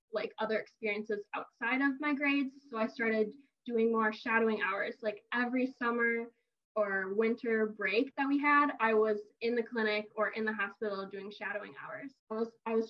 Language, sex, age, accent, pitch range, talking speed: English, female, 10-29, American, 215-255 Hz, 175 wpm